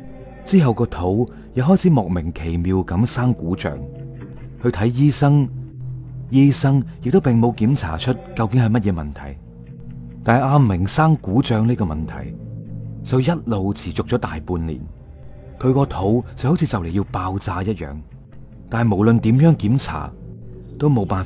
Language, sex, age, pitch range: Chinese, male, 30-49, 90-135 Hz